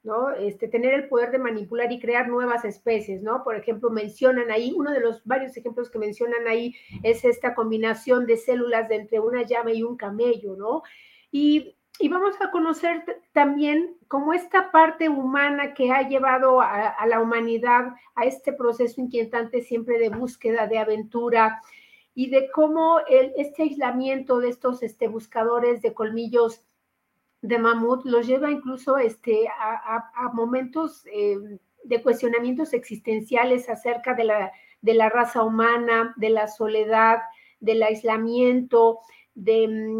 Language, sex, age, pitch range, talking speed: Spanish, female, 40-59, 225-260 Hz, 140 wpm